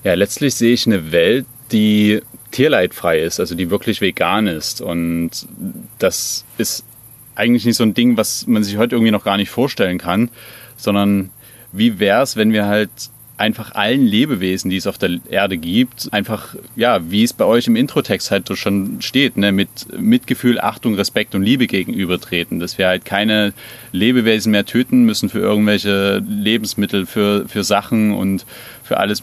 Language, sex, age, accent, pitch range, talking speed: German, male, 30-49, German, 100-125 Hz, 170 wpm